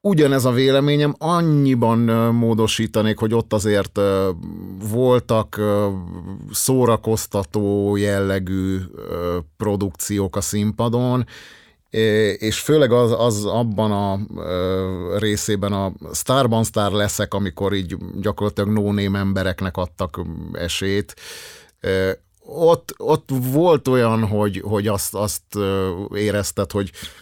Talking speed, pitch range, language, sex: 95 wpm, 100-130 Hz, Hungarian, male